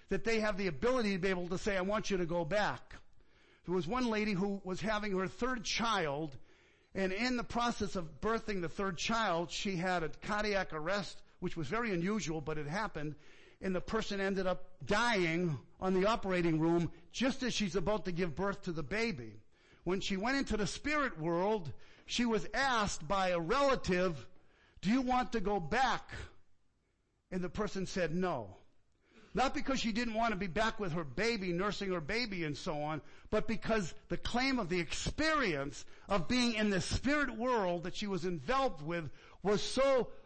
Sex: male